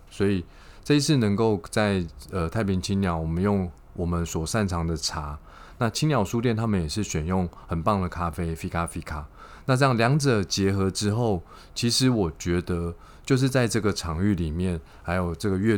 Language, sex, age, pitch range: Chinese, male, 20-39, 85-110 Hz